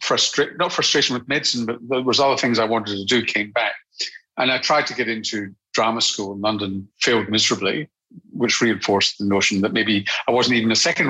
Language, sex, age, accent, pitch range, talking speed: English, male, 50-69, British, 105-125 Hz, 205 wpm